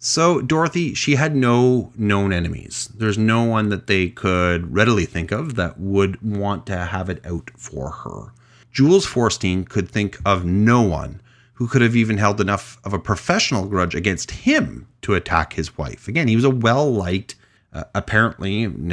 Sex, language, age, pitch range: male, English, 30-49, 95-120 Hz